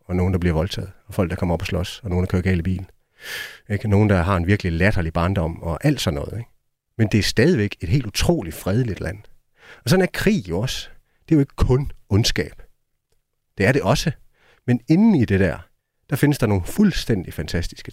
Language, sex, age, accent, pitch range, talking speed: Danish, male, 30-49, native, 95-125 Hz, 220 wpm